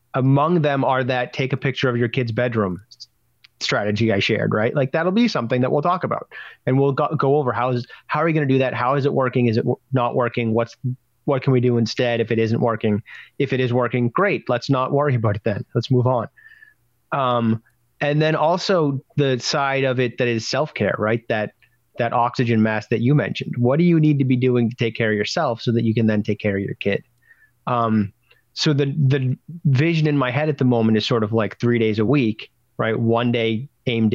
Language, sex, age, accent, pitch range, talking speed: English, male, 30-49, American, 115-130 Hz, 235 wpm